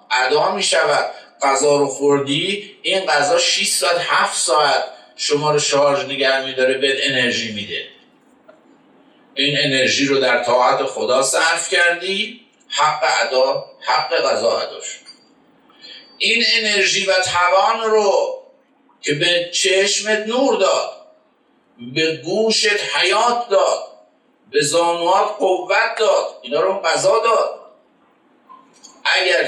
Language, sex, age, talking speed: Persian, male, 50-69, 110 wpm